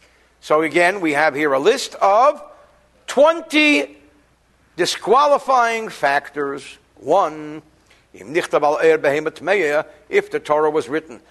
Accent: American